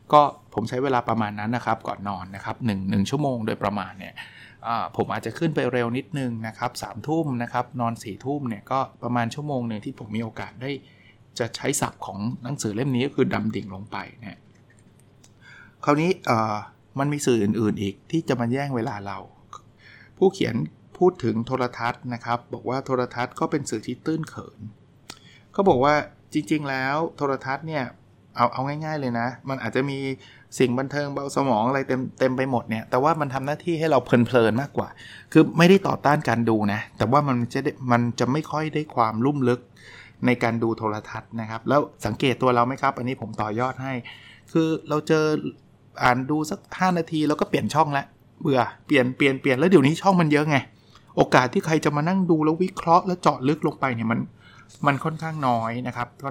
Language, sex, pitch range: Thai, male, 115-145 Hz